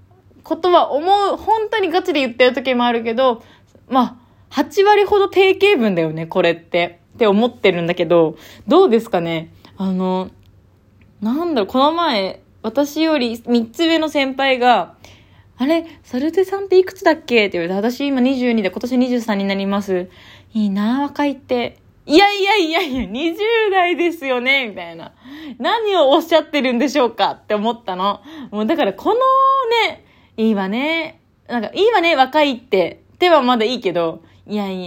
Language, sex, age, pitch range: Japanese, female, 20-39, 195-310 Hz